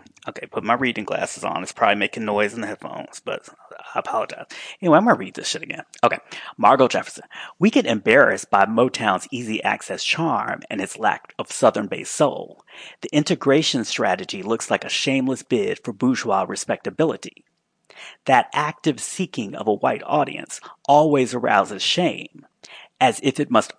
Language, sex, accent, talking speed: English, male, American, 165 wpm